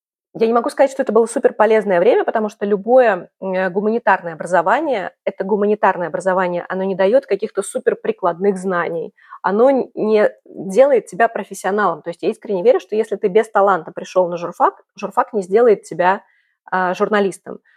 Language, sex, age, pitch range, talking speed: Russian, female, 20-39, 190-240 Hz, 160 wpm